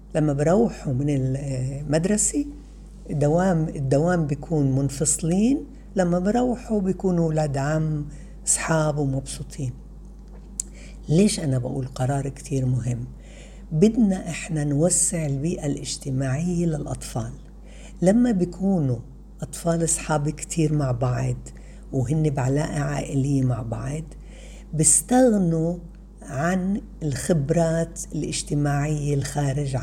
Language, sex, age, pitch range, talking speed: Arabic, female, 60-79, 140-170 Hz, 90 wpm